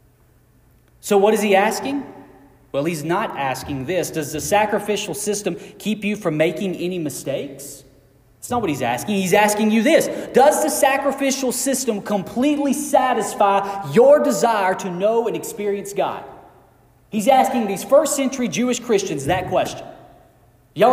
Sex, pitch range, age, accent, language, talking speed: male, 155-255 Hz, 30-49, American, English, 150 wpm